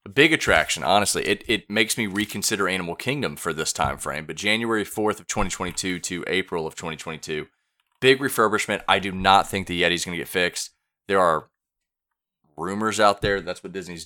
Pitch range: 85-105 Hz